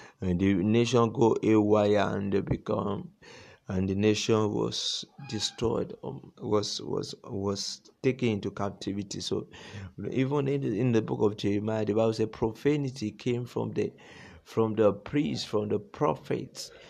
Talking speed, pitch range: 155 wpm, 100-120 Hz